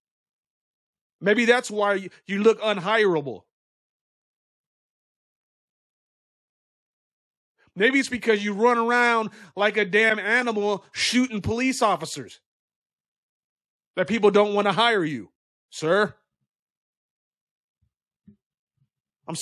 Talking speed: 85 wpm